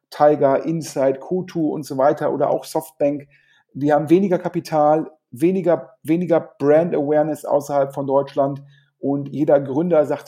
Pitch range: 140-165 Hz